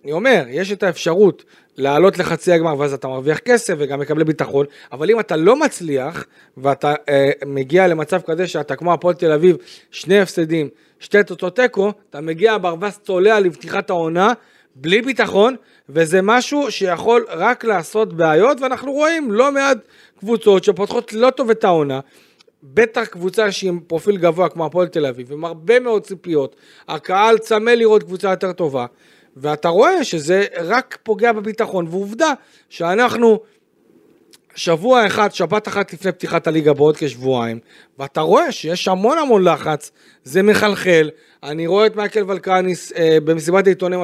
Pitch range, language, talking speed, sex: 165-220 Hz, Hebrew, 150 wpm, male